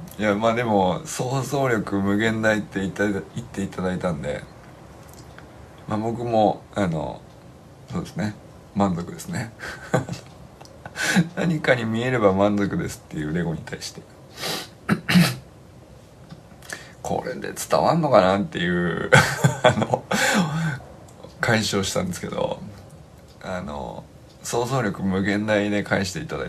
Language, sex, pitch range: Japanese, male, 100-155 Hz